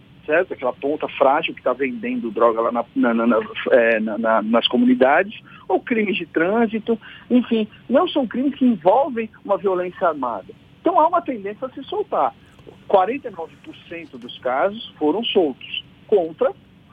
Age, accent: 50-69, Brazilian